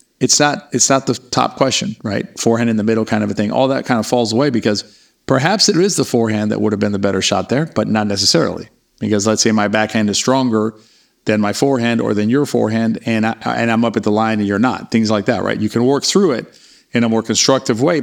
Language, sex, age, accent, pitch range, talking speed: English, male, 50-69, American, 105-130 Hz, 260 wpm